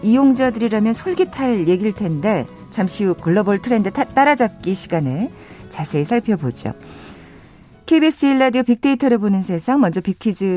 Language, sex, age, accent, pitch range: Korean, female, 40-59, native, 170-250 Hz